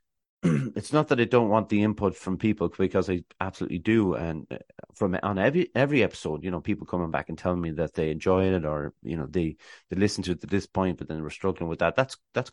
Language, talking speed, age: English, 250 wpm, 30-49